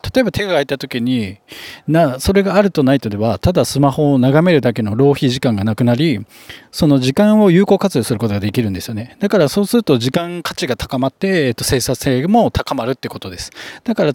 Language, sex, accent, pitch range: Japanese, male, native, 125-180 Hz